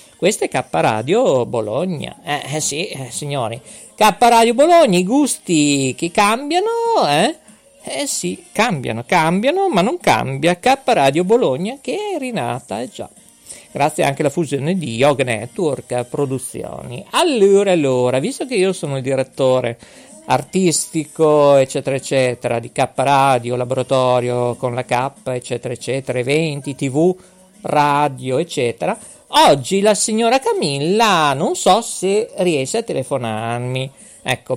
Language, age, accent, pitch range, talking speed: Italian, 50-69, native, 130-195 Hz, 130 wpm